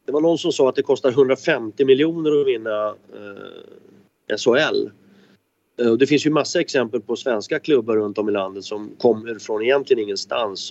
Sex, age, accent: male, 30-49, native